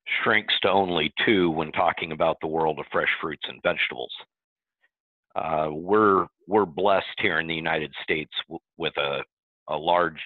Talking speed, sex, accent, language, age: 165 wpm, male, American, English, 50-69